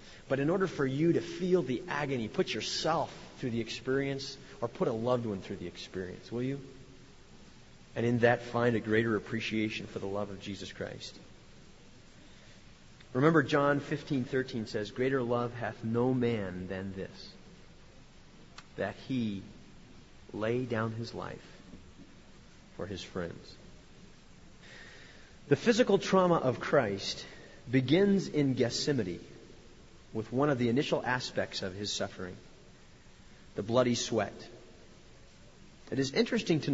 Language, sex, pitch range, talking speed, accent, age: English, male, 115-150 Hz, 130 wpm, American, 40-59